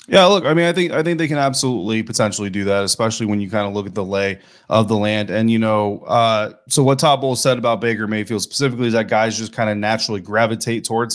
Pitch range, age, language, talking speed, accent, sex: 105-130 Hz, 20-39, English, 260 wpm, American, male